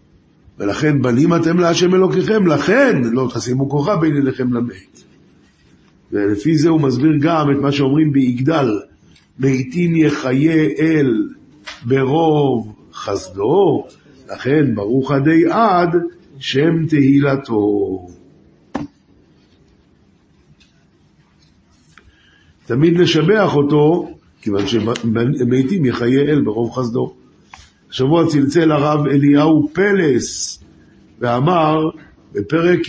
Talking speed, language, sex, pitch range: 90 wpm, Hebrew, male, 125-160 Hz